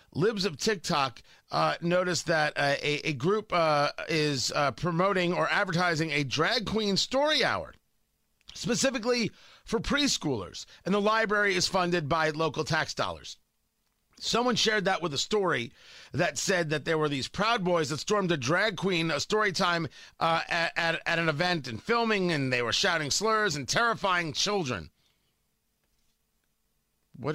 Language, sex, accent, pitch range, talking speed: English, male, American, 155-220 Hz, 155 wpm